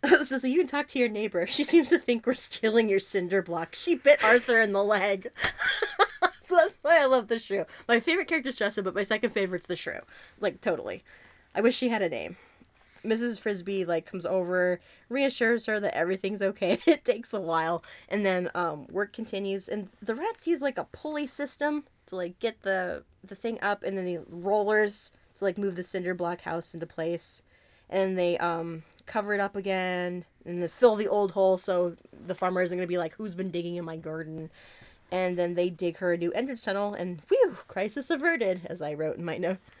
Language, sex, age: English, female, 20-39